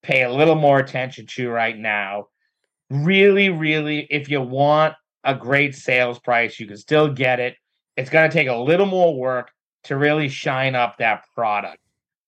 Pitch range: 125-150 Hz